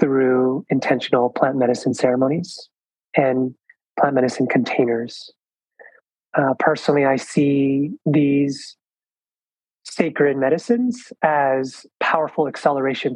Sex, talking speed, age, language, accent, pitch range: male, 85 wpm, 30-49, English, American, 130-155 Hz